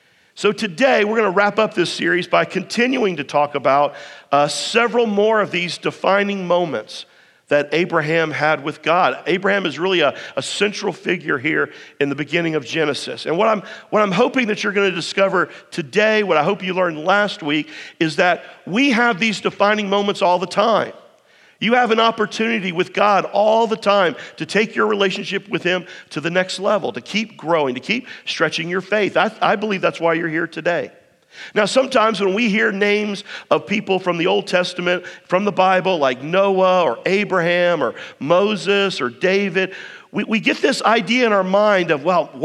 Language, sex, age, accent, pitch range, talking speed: English, male, 50-69, American, 175-210 Hz, 190 wpm